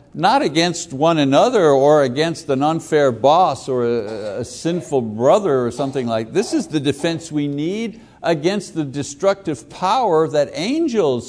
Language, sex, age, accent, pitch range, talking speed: English, male, 60-79, American, 145-200 Hz, 155 wpm